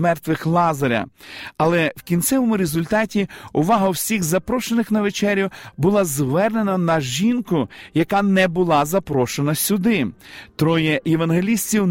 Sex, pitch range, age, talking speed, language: male, 155-205 Hz, 40-59, 110 wpm, Ukrainian